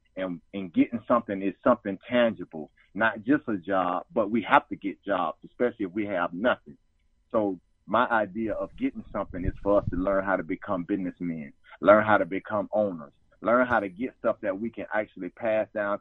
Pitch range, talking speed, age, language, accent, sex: 100-130 Hz, 200 wpm, 40-59, English, American, male